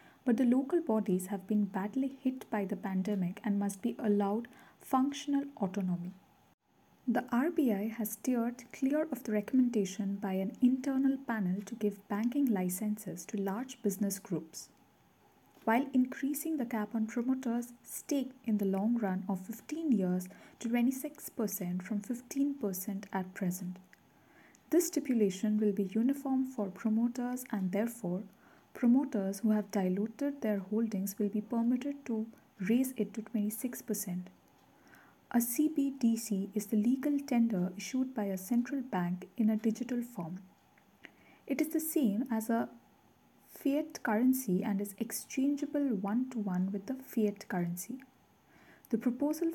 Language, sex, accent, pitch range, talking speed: English, female, Indian, 200-260 Hz, 140 wpm